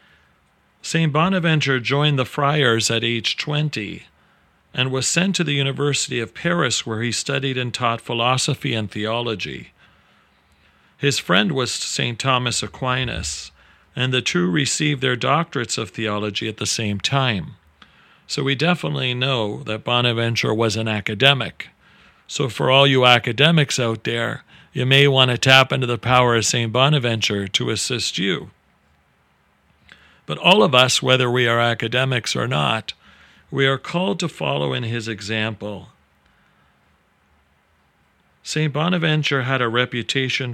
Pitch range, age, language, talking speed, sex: 105-140 Hz, 40-59, English, 140 wpm, male